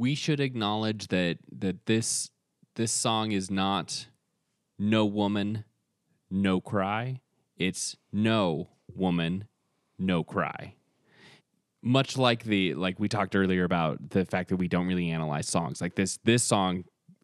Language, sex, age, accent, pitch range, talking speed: English, male, 20-39, American, 85-110 Hz, 135 wpm